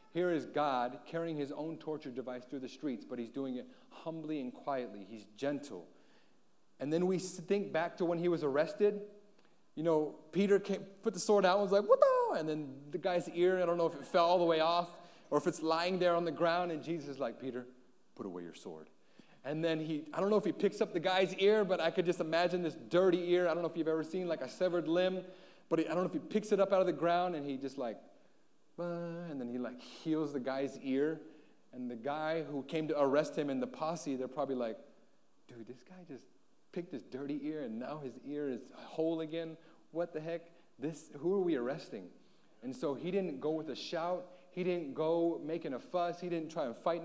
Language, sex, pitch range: English, male, 140-180 Hz